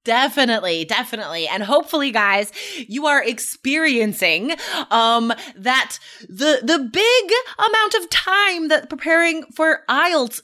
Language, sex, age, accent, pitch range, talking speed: English, female, 20-39, American, 205-305 Hz, 115 wpm